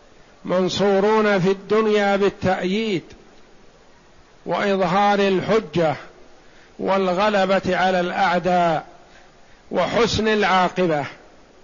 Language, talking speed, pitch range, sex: Arabic, 55 wpm, 175-215 Hz, male